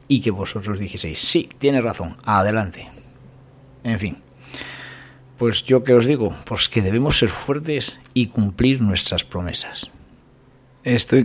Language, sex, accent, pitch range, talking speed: Spanish, male, Spanish, 105-130 Hz, 135 wpm